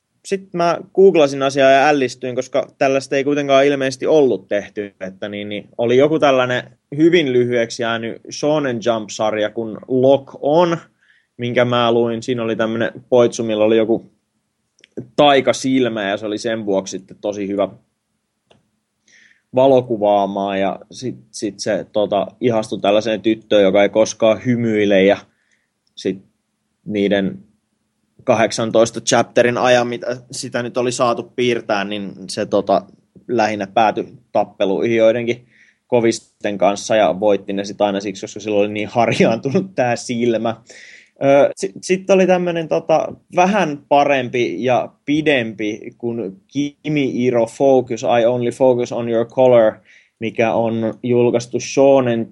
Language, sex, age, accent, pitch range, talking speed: Finnish, male, 20-39, native, 105-130 Hz, 125 wpm